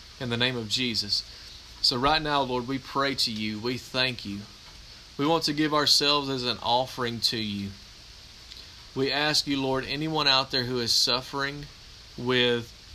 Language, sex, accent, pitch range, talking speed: English, male, American, 110-135 Hz, 170 wpm